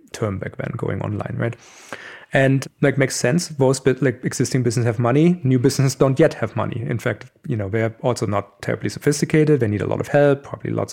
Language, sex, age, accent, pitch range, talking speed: English, male, 30-49, German, 125-150 Hz, 220 wpm